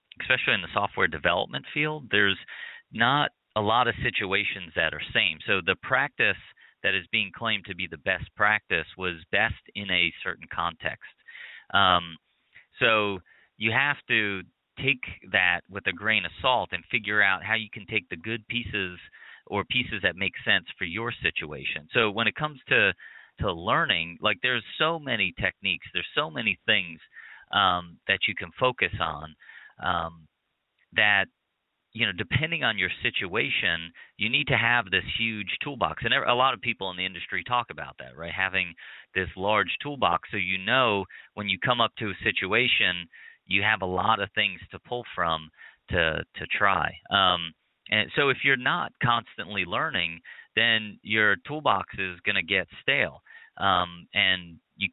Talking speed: 170 wpm